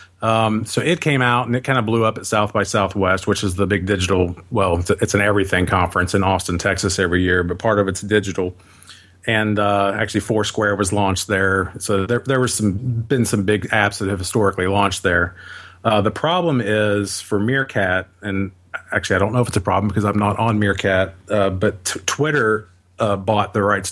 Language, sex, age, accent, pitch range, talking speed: English, male, 40-59, American, 95-110 Hz, 215 wpm